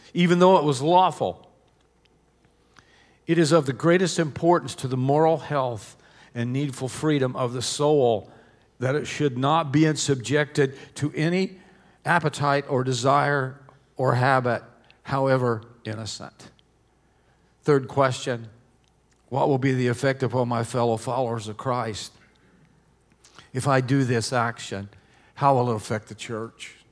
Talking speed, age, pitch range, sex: 135 wpm, 50-69, 120-145 Hz, male